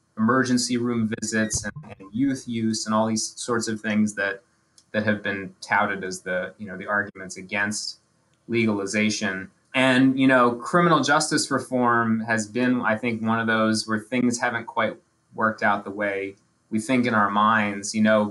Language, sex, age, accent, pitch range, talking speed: English, male, 20-39, American, 110-125 Hz, 175 wpm